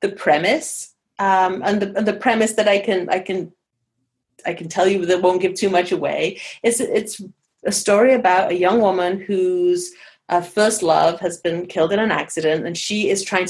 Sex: female